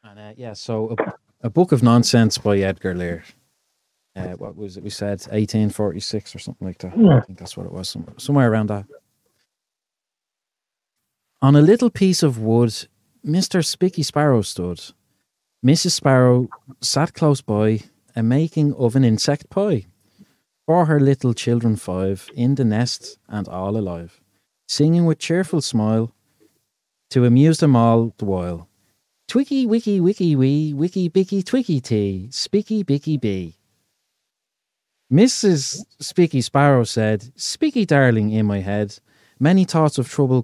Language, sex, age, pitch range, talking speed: English, male, 30-49, 110-165 Hz, 130 wpm